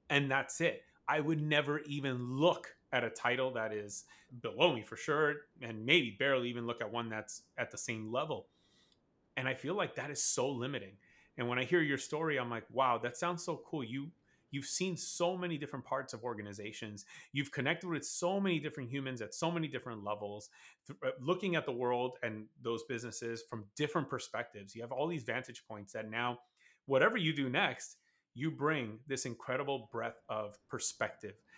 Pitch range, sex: 115-150 Hz, male